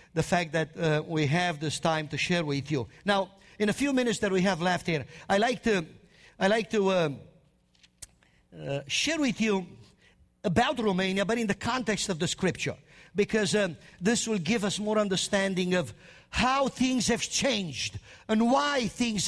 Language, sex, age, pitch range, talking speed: English, male, 50-69, 190-240 Hz, 180 wpm